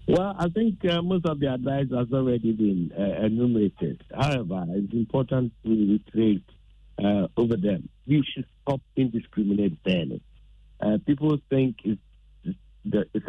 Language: English